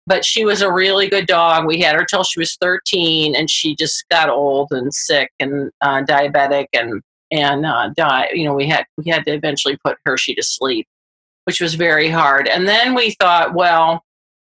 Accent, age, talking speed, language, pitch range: American, 40-59, 200 wpm, English, 155-185 Hz